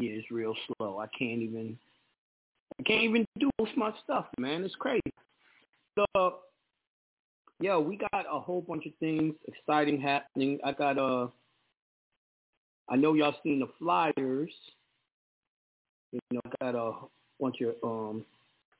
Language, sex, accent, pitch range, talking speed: English, male, American, 130-165 Hz, 145 wpm